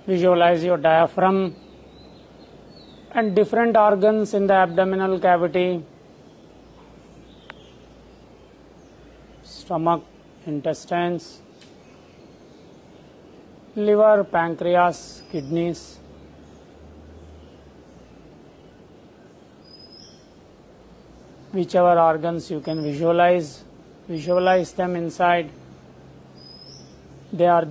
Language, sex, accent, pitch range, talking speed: English, male, Indian, 155-180 Hz, 55 wpm